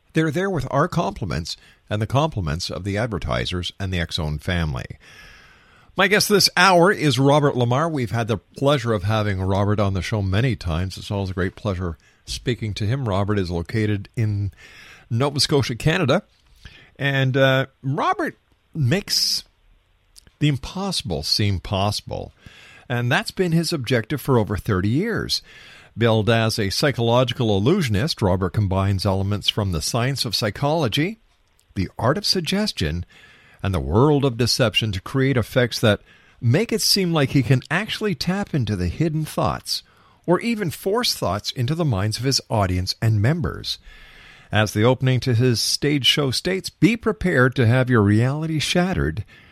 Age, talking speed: 50-69, 160 wpm